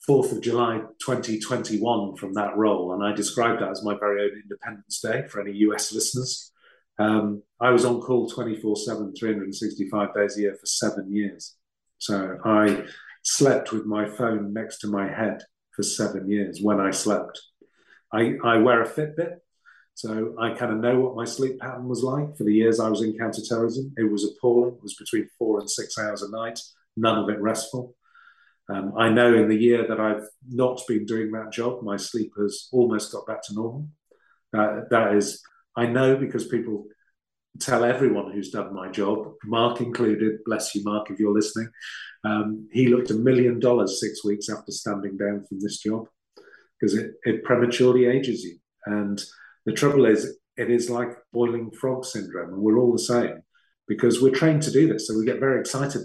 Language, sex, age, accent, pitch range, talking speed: English, male, 40-59, British, 105-120 Hz, 190 wpm